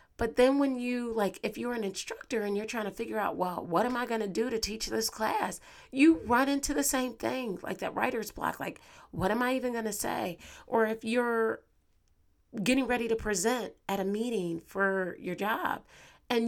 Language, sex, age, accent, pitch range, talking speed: English, female, 30-49, American, 175-230 Hz, 210 wpm